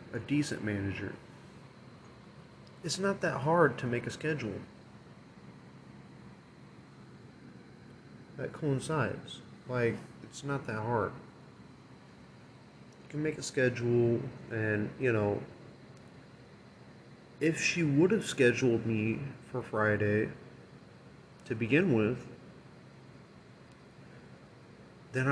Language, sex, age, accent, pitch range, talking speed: English, male, 30-49, American, 105-140 Hz, 90 wpm